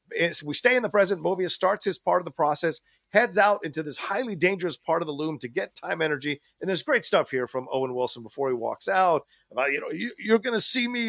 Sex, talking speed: male, 250 wpm